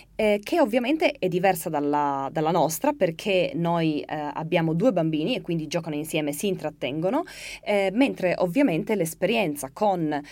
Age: 20-39